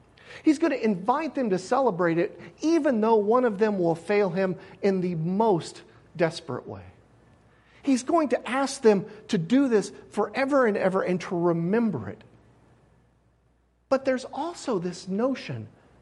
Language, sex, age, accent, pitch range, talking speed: English, male, 50-69, American, 150-210 Hz, 155 wpm